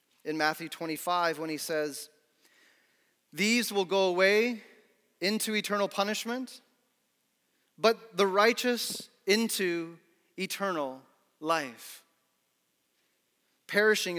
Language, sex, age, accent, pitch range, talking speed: English, male, 30-49, American, 170-215 Hz, 85 wpm